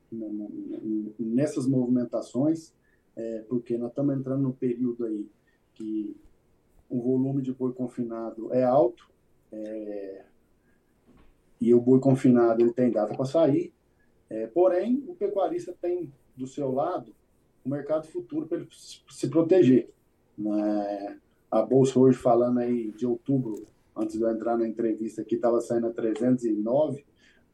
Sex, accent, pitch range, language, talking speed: male, Brazilian, 115-135 Hz, Portuguese, 140 wpm